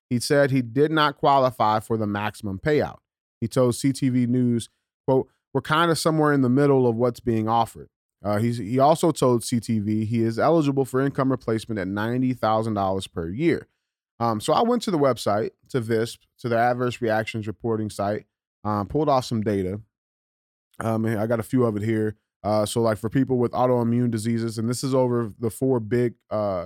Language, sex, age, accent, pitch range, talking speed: English, male, 20-39, American, 105-130 Hz, 195 wpm